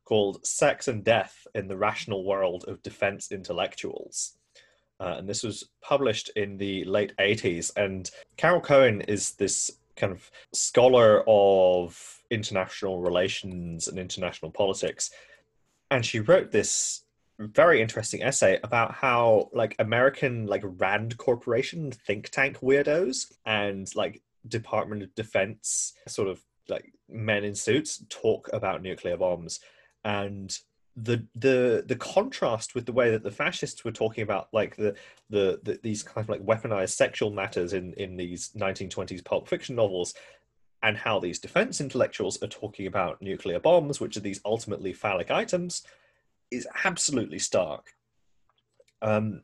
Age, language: 20-39, English